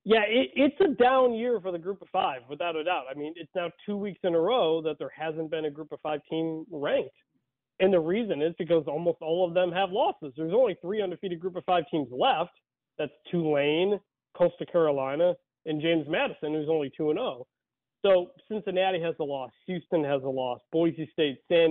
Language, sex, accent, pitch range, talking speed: English, male, American, 150-190 Hz, 210 wpm